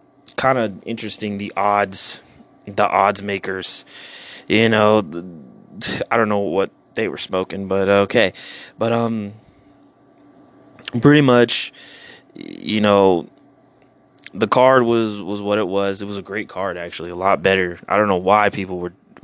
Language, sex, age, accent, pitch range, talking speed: English, male, 20-39, American, 95-110 Hz, 145 wpm